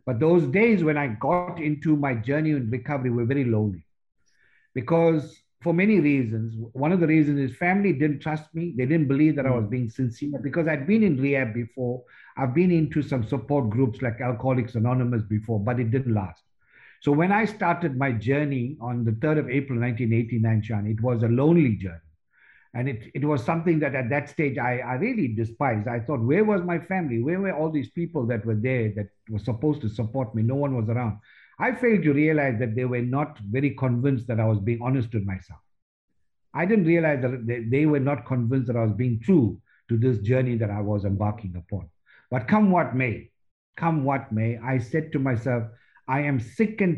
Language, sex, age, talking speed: English, male, 50-69, 205 wpm